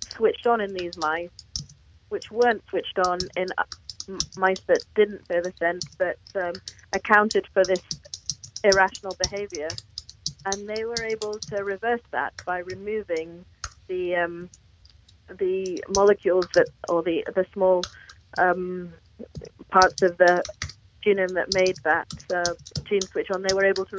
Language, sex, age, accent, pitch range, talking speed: English, female, 30-49, British, 175-200 Hz, 145 wpm